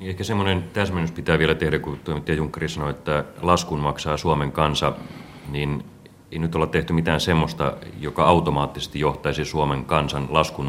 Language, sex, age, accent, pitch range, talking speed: Finnish, male, 30-49, native, 75-90 Hz, 155 wpm